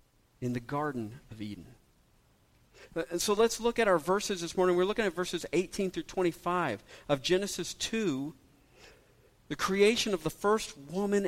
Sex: male